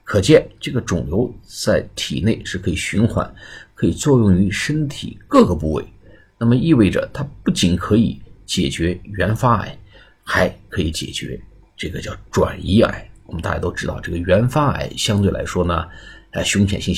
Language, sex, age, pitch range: Chinese, male, 50-69, 90-110 Hz